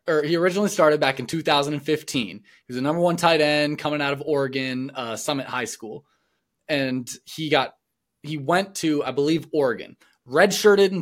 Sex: male